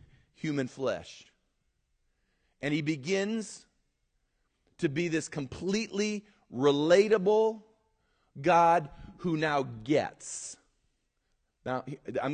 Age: 40-59